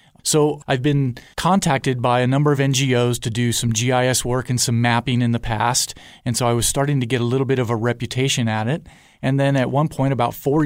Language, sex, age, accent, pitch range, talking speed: English, male, 30-49, American, 115-135 Hz, 235 wpm